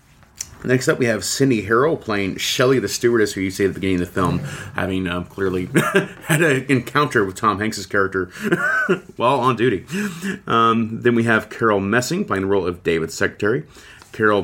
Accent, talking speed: American, 185 wpm